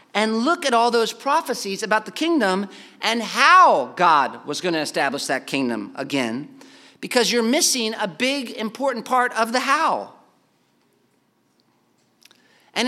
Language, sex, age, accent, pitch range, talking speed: English, male, 40-59, American, 175-245 Hz, 140 wpm